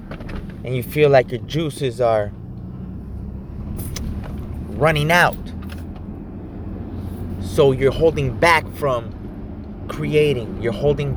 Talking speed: 90 wpm